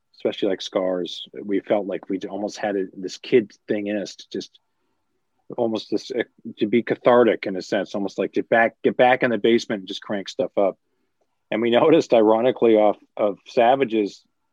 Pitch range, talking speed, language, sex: 95-120 Hz, 190 wpm, English, male